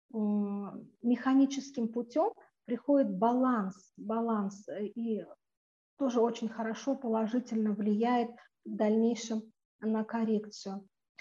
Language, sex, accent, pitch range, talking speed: Russian, female, native, 220-250 Hz, 80 wpm